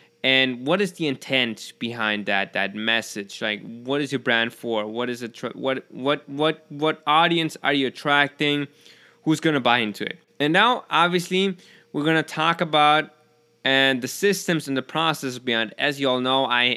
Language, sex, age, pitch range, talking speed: English, male, 20-39, 120-155 Hz, 185 wpm